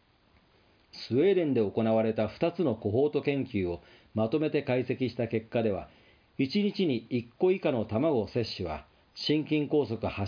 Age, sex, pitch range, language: 40-59, male, 100-145 Hz, Japanese